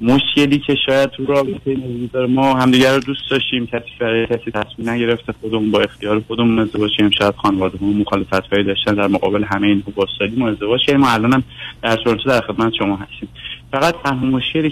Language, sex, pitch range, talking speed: Persian, male, 105-135 Hz, 175 wpm